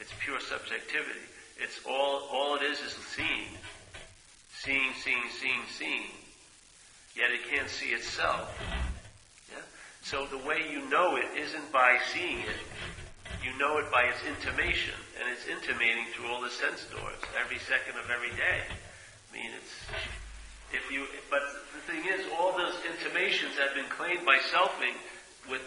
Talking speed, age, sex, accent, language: 155 wpm, 50-69, male, American, English